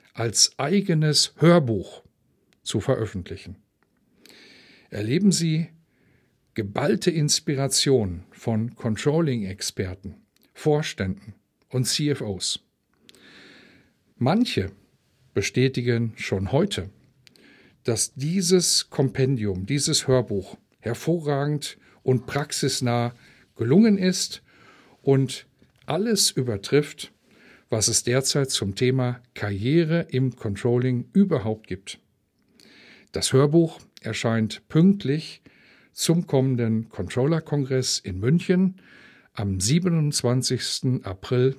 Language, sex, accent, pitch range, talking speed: German, male, German, 110-155 Hz, 75 wpm